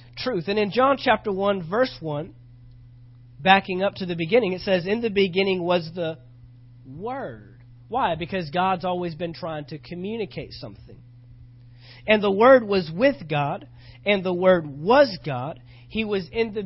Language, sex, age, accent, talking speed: English, male, 40-59, American, 160 wpm